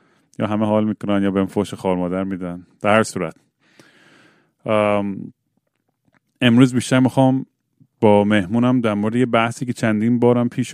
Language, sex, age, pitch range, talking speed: Persian, male, 30-49, 100-115 Hz, 150 wpm